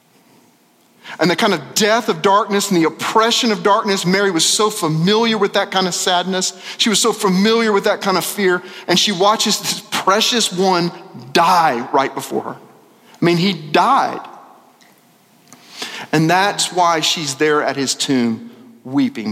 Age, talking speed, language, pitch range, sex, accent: 40-59, 165 wpm, English, 150-215 Hz, male, American